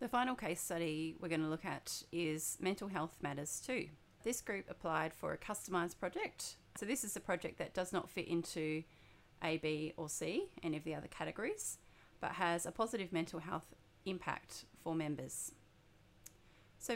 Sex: female